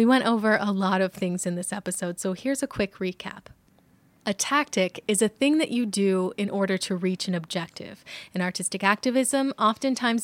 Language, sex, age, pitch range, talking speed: English, female, 20-39, 185-225 Hz, 195 wpm